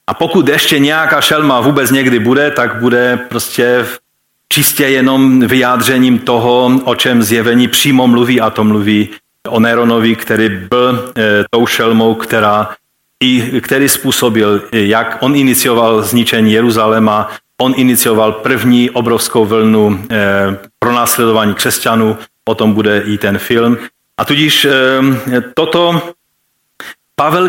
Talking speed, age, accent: 125 wpm, 40-59, native